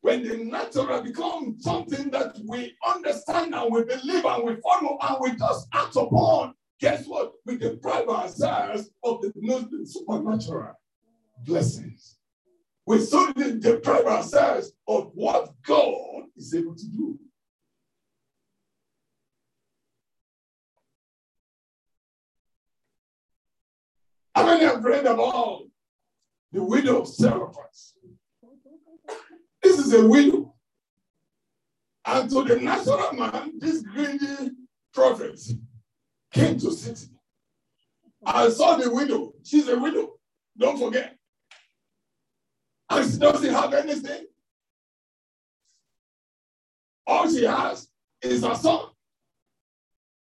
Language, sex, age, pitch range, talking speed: English, male, 60-79, 230-315 Hz, 105 wpm